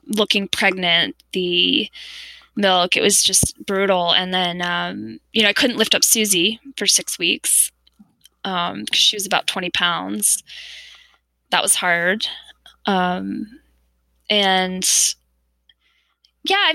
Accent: American